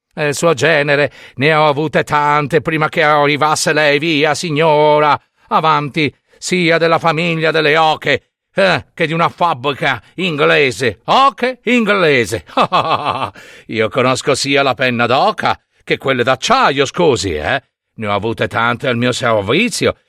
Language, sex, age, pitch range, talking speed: Italian, male, 50-69, 135-210 Hz, 135 wpm